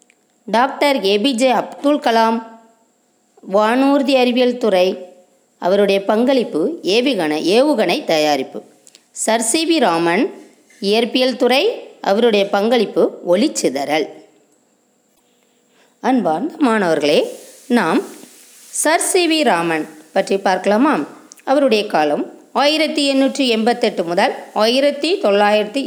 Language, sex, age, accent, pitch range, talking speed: Tamil, female, 20-39, native, 210-275 Hz, 75 wpm